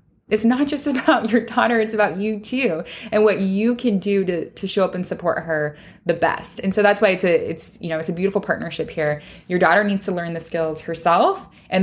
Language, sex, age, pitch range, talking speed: English, female, 20-39, 170-215 Hz, 240 wpm